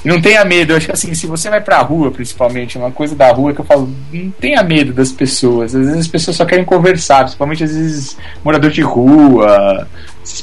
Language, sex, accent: Portuguese, male, Brazilian